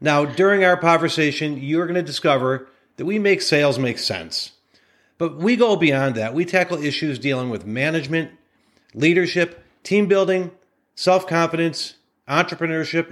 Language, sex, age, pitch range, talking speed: English, male, 40-59, 135-175 Hz, 135 wpm